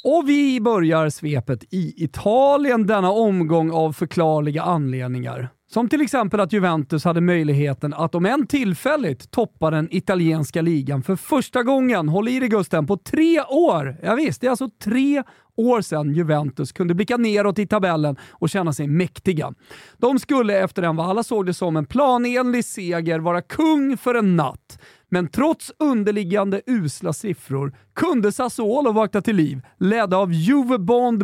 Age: 40-59